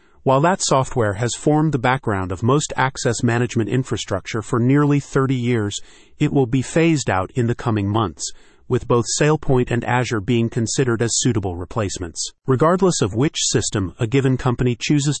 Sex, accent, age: male, American, 40-59